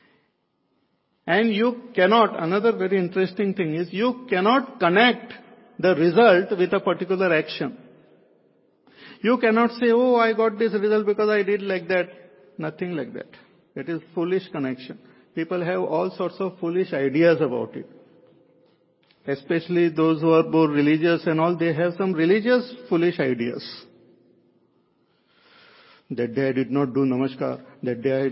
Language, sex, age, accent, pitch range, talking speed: English, male, 50-69, Indian, 140-205 Hz, 150 wpm